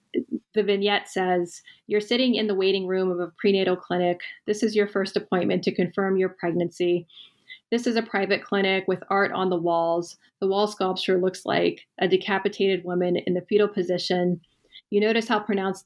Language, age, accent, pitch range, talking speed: English, 30-49, American, 180-205 Hz, 180 wpm